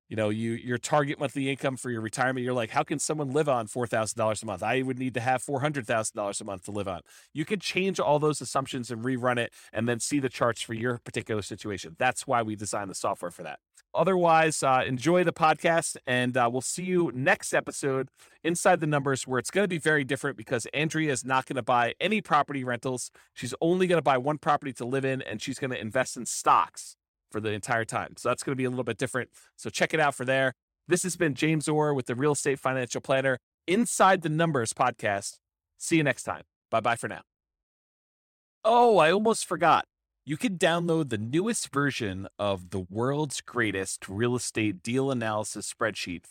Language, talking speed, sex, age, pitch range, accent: English, 215 wpm, male, 30-49, 110-150 Hz, American